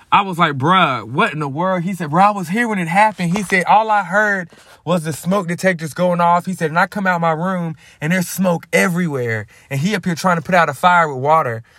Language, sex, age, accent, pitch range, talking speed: English, male, 20-39, American, 125-185 Hz, 270 wpm